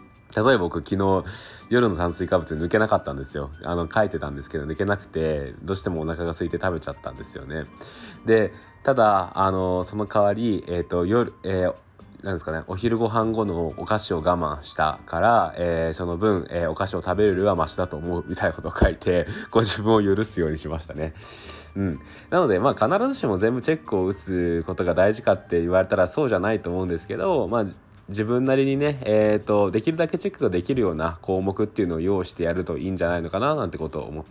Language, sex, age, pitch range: Japanese, male, 20-39, 85-110 Hz